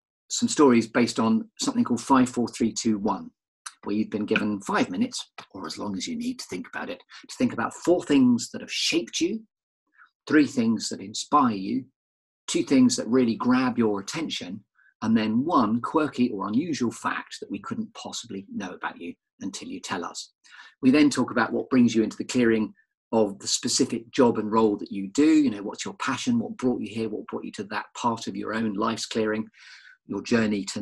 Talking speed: 210 wpm